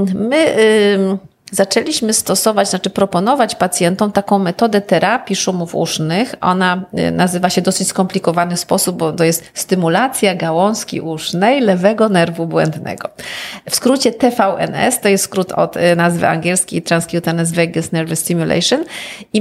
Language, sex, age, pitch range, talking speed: Polish, female, 30-49, 180-230 Hz, 135 wpm